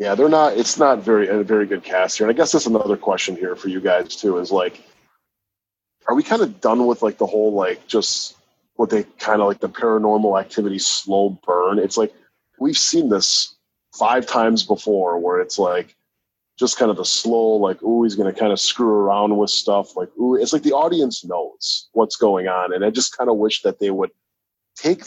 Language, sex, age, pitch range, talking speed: English, male, 20-39, 100-125 Hz, 220 wpm